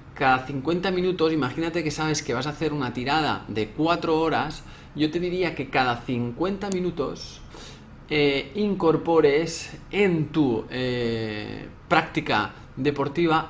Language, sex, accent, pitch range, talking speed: Spanish, male, Spanish, 115-155 Hz, 130 wpm